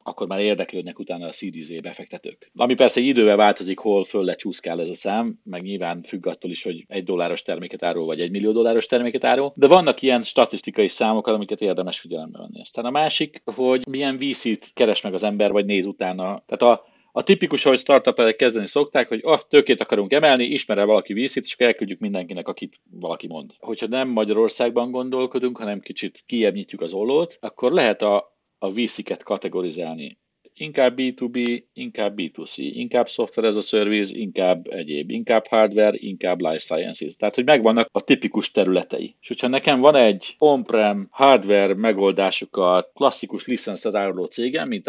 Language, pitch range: Hungarian, 100-130 Hz